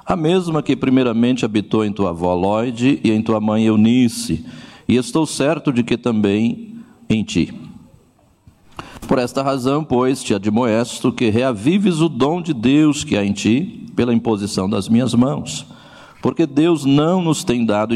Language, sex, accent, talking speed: Portuguese, male, Brazilian, 165 wpm